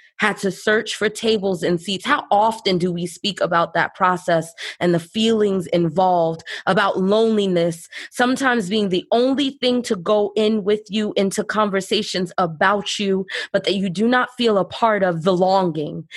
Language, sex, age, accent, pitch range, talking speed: English, female, 20-39, American, 195-235 Hz, 170 wpm